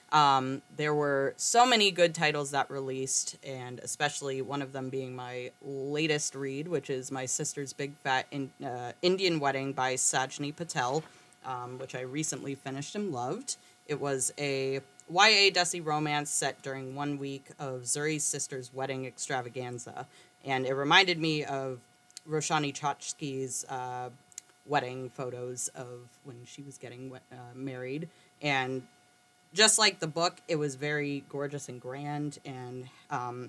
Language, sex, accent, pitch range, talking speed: English, female, American, 130-150 Hz, 150 wpm